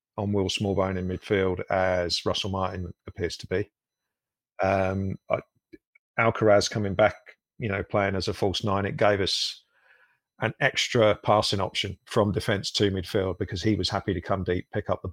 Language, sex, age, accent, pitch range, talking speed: English, male, 50-69, British, 95-105 Hz, 175 wpm